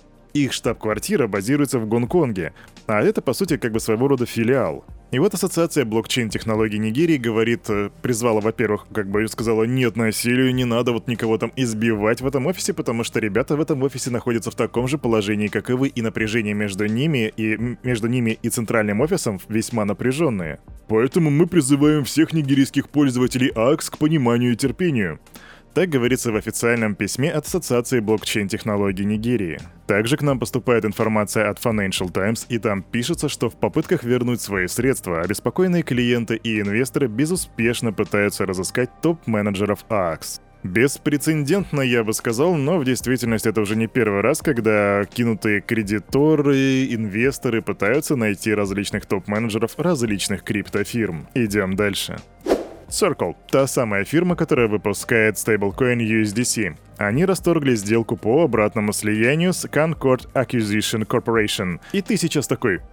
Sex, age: male, 20-39